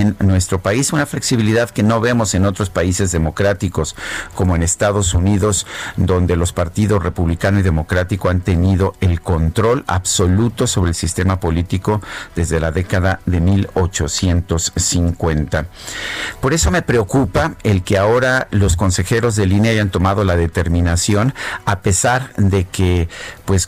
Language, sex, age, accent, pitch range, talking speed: Spanish, male, 50-69, Mexican, 90-105 Hz, 140 wpm